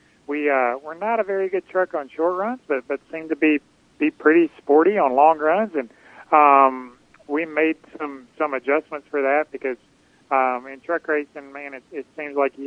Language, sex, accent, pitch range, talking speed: English, male, American, 130-155 Hz, 200 wpm